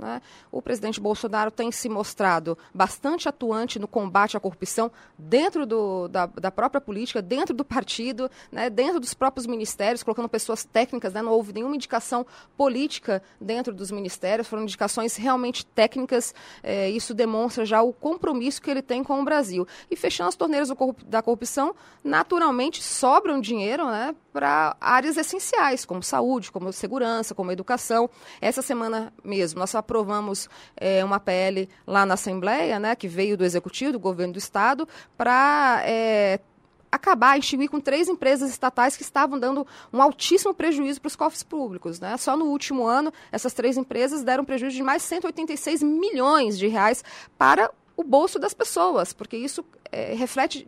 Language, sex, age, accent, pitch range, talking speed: Portuguese, female, 20-39, Brazilian, 215-280 Hz, 165 wpm